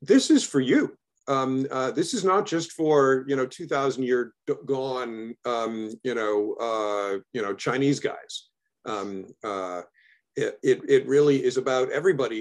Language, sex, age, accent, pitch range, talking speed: English, male, 50-69, American, 110-155 Hz, 155 wpm